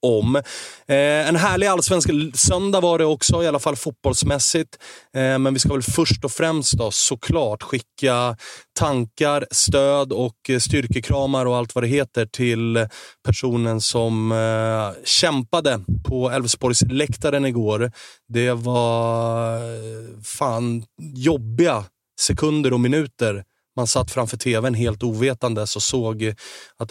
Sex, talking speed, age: male, 125 wpm, 30-49